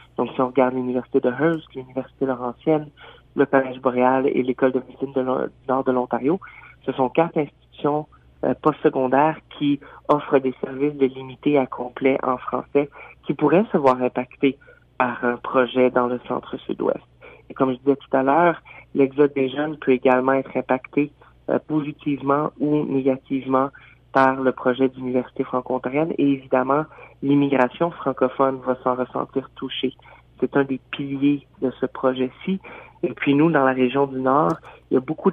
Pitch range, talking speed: 130-145 Hz, 165 wpm